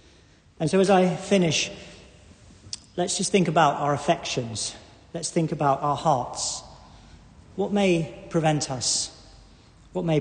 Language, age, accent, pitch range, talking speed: English, 40-59, British, 140-175 Hz, 130 wpm